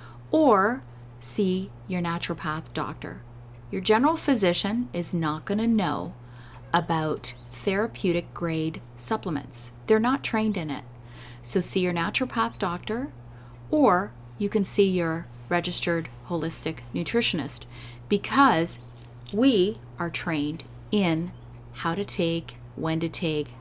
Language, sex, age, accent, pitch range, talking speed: English, female, 30-49, American, 120-175 Hz, 115 wpm